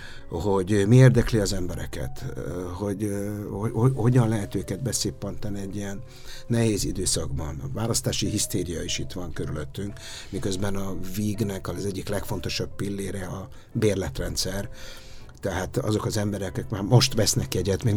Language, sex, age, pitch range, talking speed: Hungarian, male, 60-79, 90-115 Hz, 140 wpm